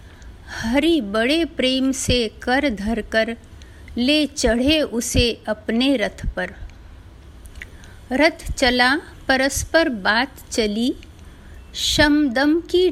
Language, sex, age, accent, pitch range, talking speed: Hindi, female, 50-69, native, 220-300 Hz, 95 wpm